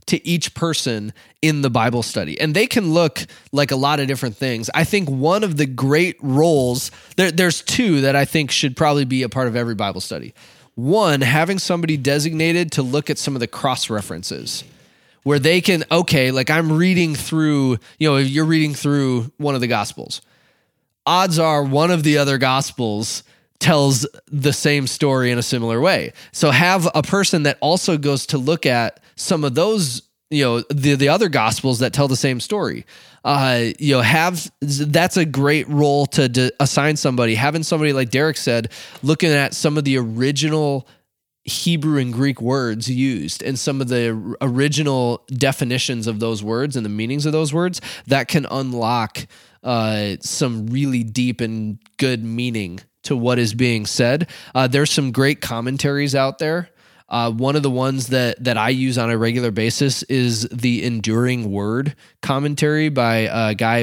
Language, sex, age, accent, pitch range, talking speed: English, male, 20-39, American, 120-150 Hz, 180 wpm